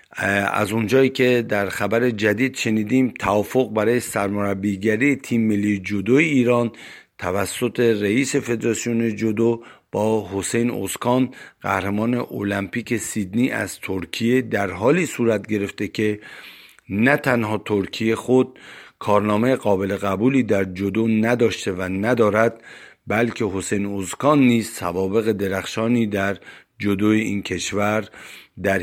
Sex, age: male, 50-69